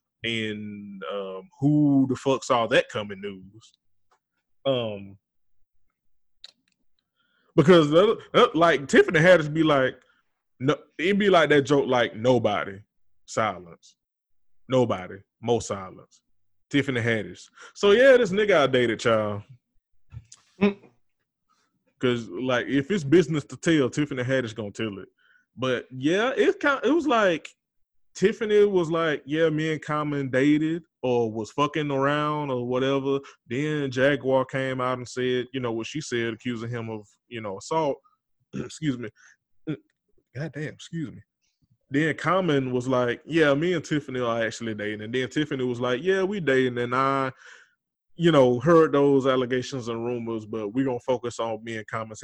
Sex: male